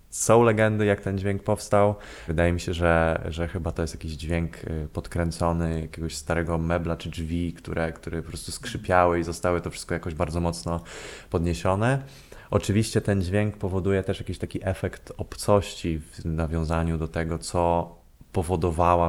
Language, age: Polish, 20-39